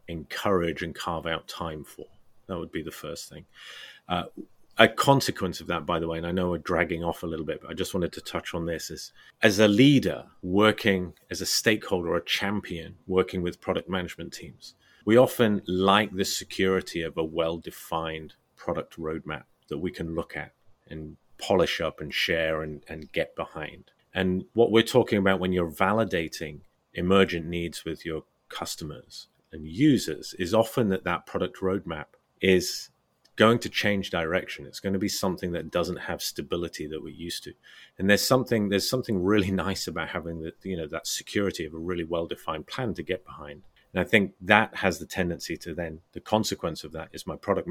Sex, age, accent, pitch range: male, 30-49, British, 80-100 Hz